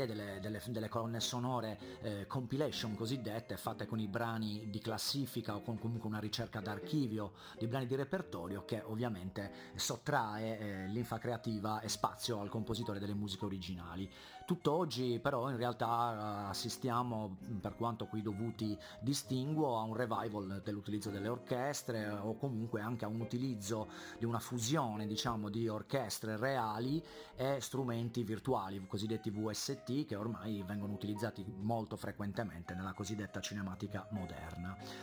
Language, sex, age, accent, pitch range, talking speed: Italian, male, 40-59, native, 105-125 Hz, 135 wpm